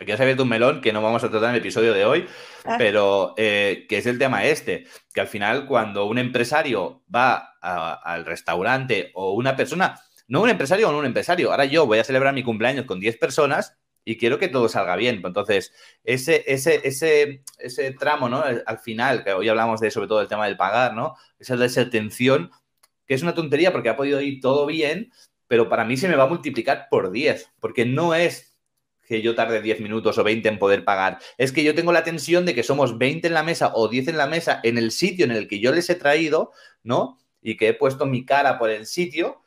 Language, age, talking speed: Spanish, 30-49, 230 wpm